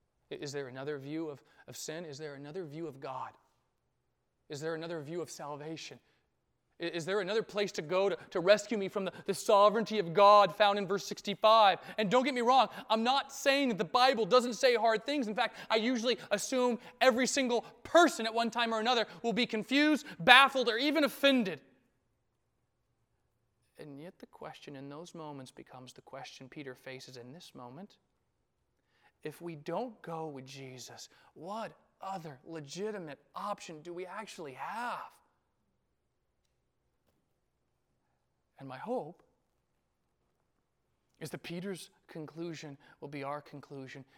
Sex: male